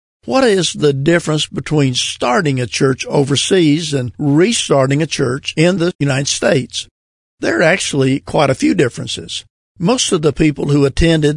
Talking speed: 160 wpm